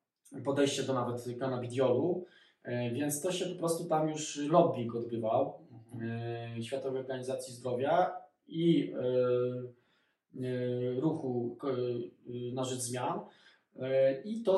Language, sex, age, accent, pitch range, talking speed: Polish, male, 20-39, native, 120-155 Hz, 110 wpm